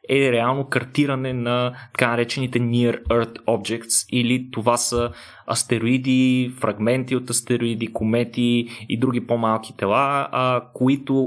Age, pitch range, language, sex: 20-39, 115-140 Hz, Bulgarian, male